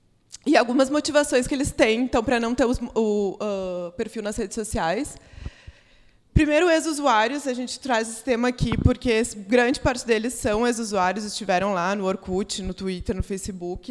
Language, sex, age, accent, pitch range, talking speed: Portuguese, female, 20-39, Brazilian, 205-250 Hz, 175 wpm